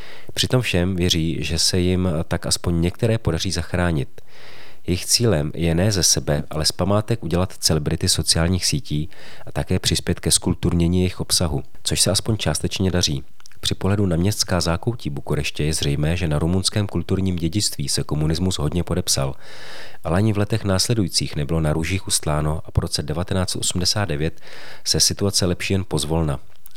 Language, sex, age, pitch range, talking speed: Czech, male, 40-59, 80-95 Hz, 160 wpm